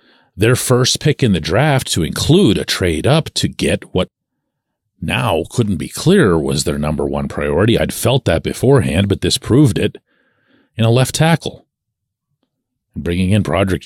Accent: American